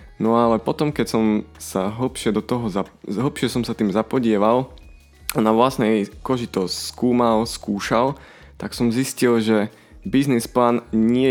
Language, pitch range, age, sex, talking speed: Slovak, 100-120 Hz, 20-39, male, 140 wpm